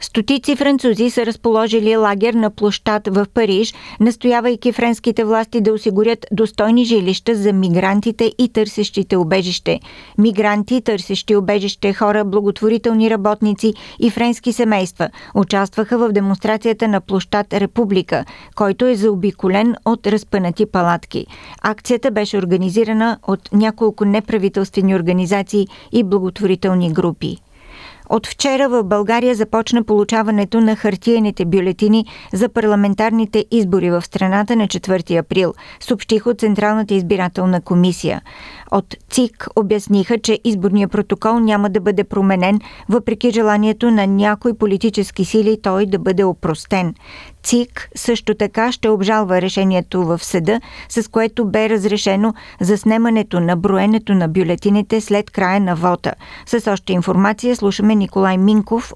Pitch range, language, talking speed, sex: 195-225 Hz, Bulgarian, 125 wpm, female